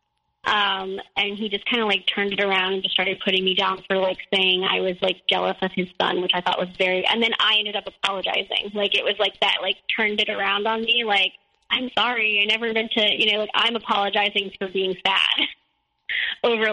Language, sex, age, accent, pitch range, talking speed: English, female, 20-39, American, 195-220 Hz, 230 wpm